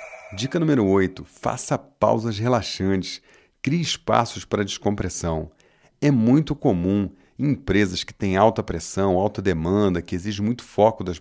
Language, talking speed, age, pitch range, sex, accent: Portuguese, 140 wpm, 40-59, 95-120 Hz, male, Brazilian